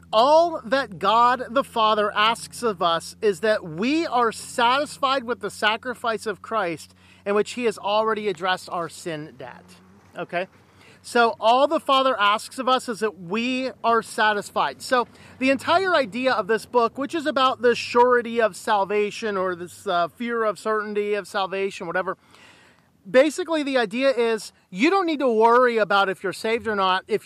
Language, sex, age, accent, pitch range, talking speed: English, male, 40-59, American, 200-250 Hz, 175 wpm